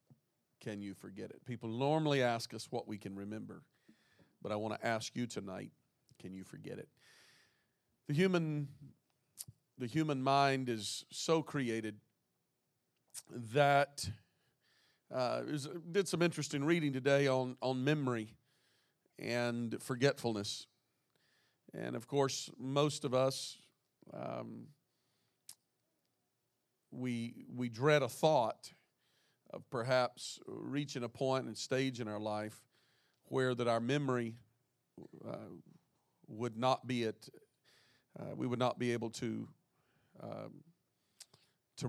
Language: English